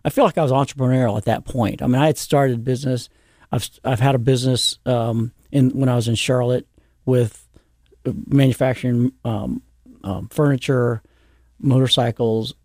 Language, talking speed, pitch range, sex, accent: English, 155 wpm, 115-135 Hz, male, American